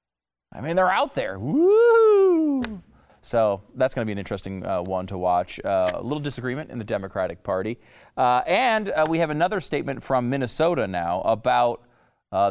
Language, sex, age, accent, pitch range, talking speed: English, male, 40-59, American, 100-145 Hz, 175 wpm